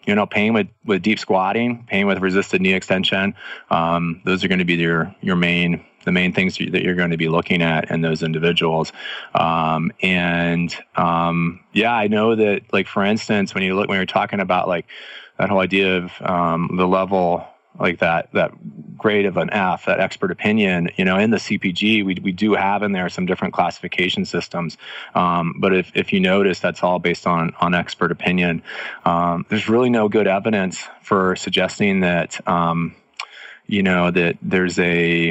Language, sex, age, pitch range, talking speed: English, male, 20-39, 85-100 Hz, 190 wpm